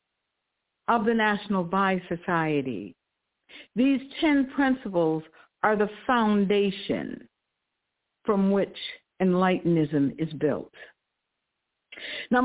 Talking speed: 80 wpm